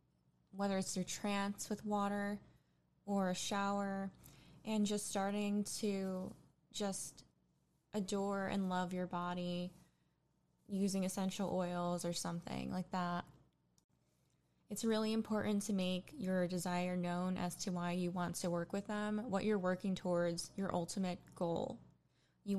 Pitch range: 180-200 Hz